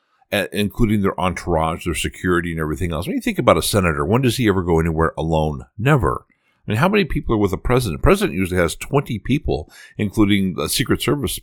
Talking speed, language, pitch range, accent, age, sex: 210 wpm, English, 80-120 Hz, American, 60-79, male